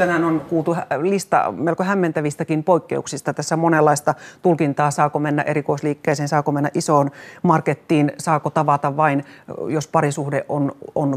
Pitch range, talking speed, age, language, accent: 155-185 Hz, 130 wpm, 30-49, Finnish, native